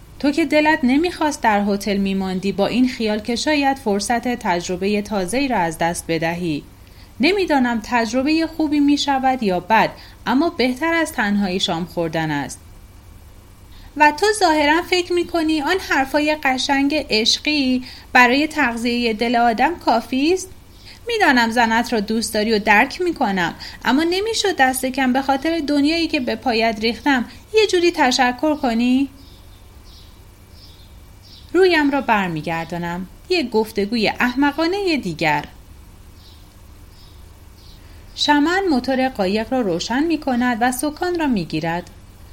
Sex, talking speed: female, 130 wpm